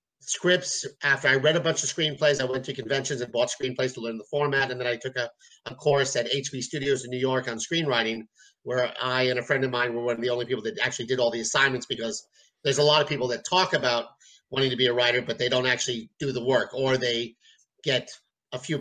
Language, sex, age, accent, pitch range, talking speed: English, male, 50-69, American, 125-145 Hz, 250 wpm